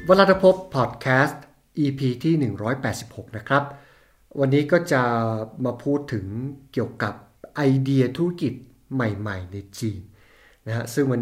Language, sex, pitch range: Thai, male, 115-145 Hz